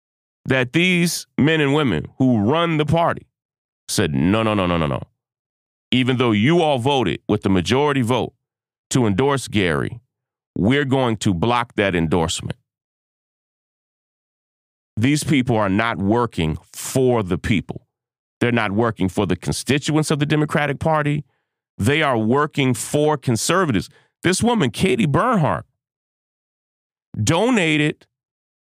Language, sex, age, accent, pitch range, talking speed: English, male, 40-59, American, 120-185 Hz, 130 wpm